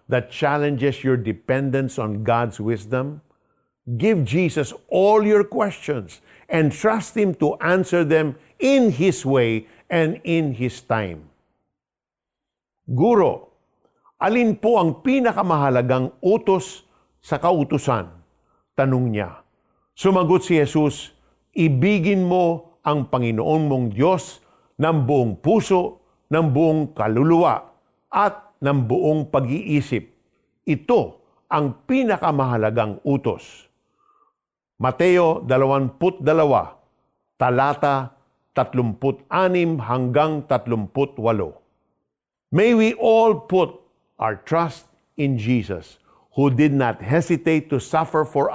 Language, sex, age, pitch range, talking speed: Filipino, male, 50-69, 130-175 Hz, 95 wpm